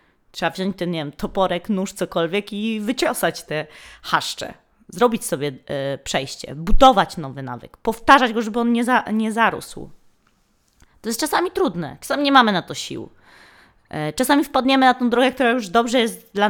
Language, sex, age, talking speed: Polish, female, 20-39, 165 wpm